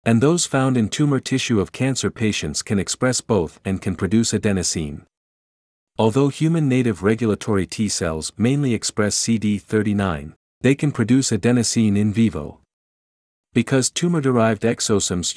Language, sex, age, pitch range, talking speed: English, male, 50-69, 95-125 Hz, 135 wpm